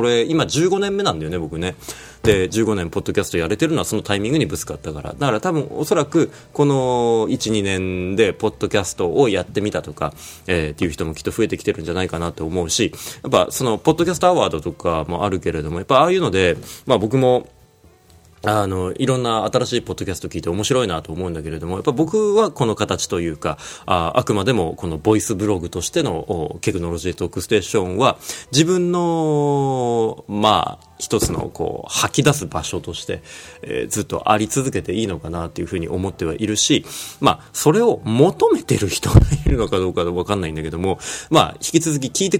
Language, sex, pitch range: Japanese, male, 85-130 Hz